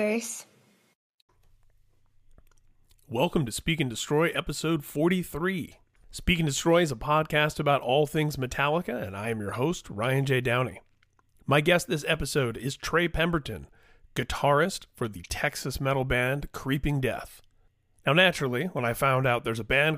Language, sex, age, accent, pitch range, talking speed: English, male, 30-49, American, 110-155 Hz, 145 wpm